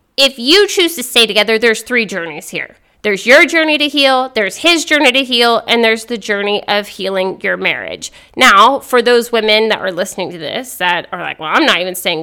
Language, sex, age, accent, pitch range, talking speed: English, female, 20-39, American, 195-260 Hz, 220 wpm